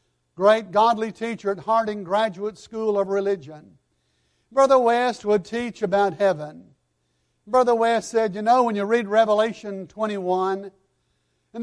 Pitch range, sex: 185-245 Hz, male